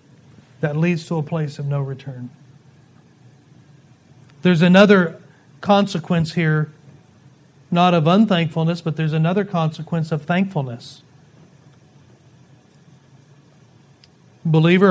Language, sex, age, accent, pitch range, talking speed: English, male, 40-59, American, 150-215 Hz, 90 wpm